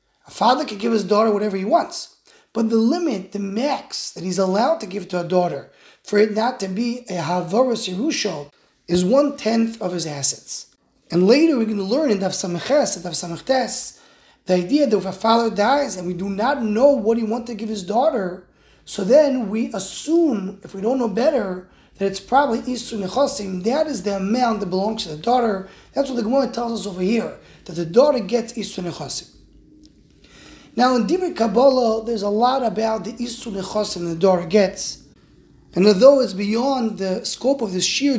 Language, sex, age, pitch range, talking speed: English, male, 30-49, 185-245 Hz, 200 wpm